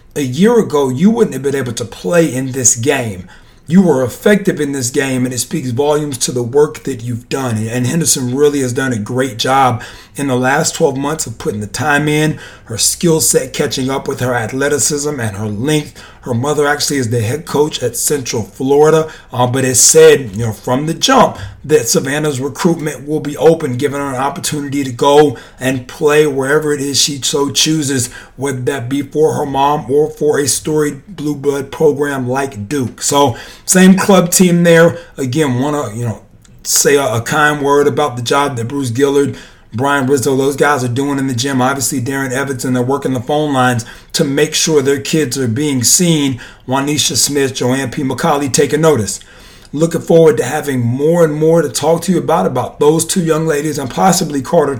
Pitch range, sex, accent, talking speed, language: 125-150 Hz, male, American, 205 wpm, English